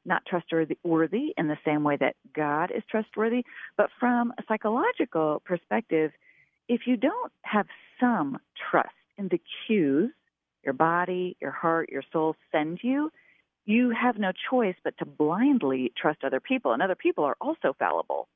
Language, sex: English, female